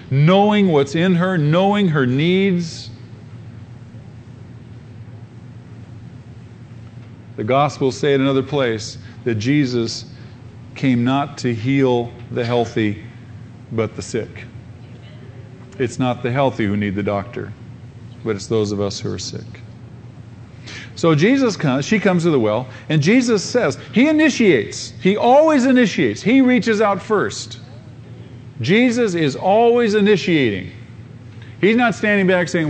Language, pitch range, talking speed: English, 115-150 Hz, 125 wpm